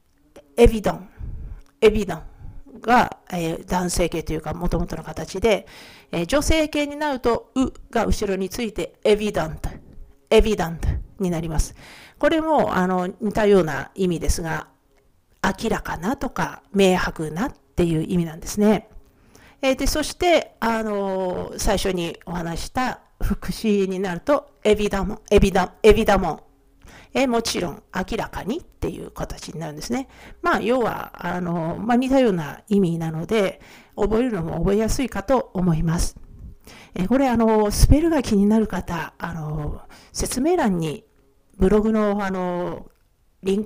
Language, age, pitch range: Japanese, 50-69, 175-230 Hz